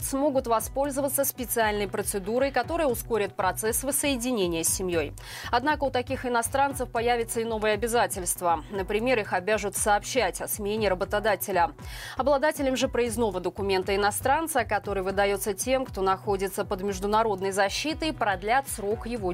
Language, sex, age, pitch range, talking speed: Russian, female, 20-39, 200-265 Hz, 125 wpm